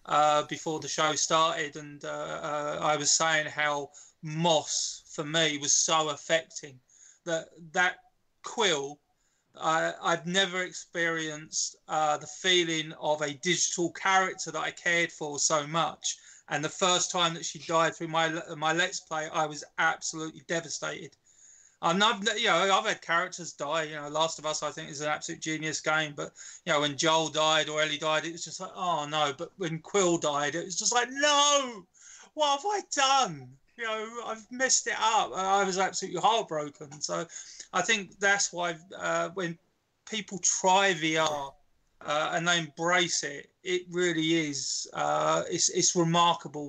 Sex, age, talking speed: male, 20-39, 175 wpm